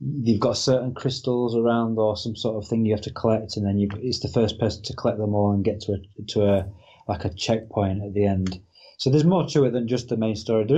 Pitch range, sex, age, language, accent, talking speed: 105-130 Hz, male, 20-39, English, British, 265 wpm